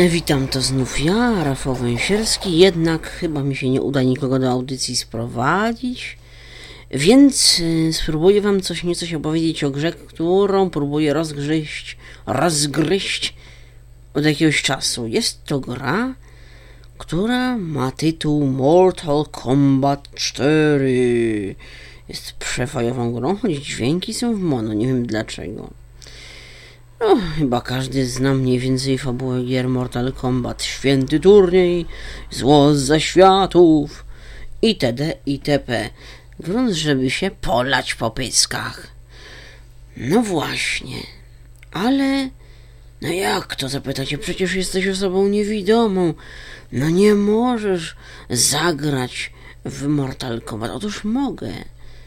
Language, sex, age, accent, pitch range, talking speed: Polish, female, 40-59, native, 125-175 Hz, 110 wpm